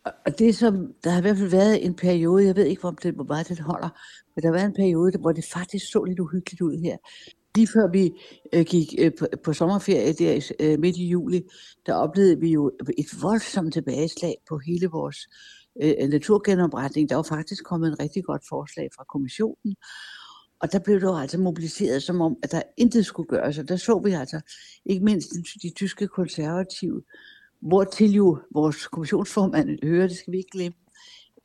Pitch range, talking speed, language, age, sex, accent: 160-195 Hz, 185 wpm, Danish, 60-79, female, native